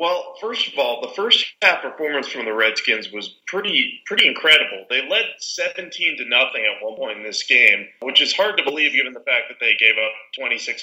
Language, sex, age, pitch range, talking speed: English, male, 30-49, 120-180 Hz, 220 wpm